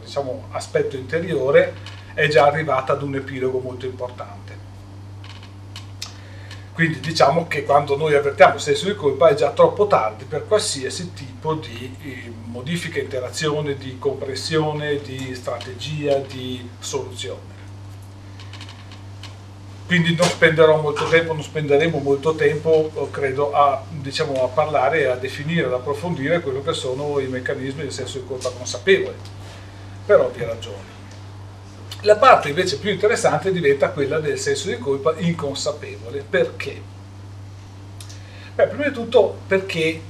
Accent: native